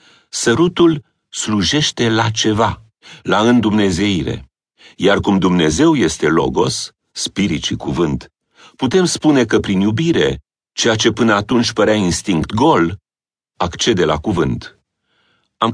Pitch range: 95-125 Hz